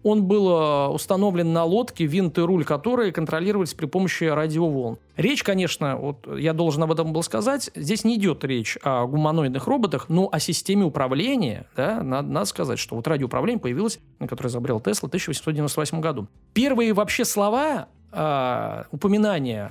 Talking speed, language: 155 wpm, Russian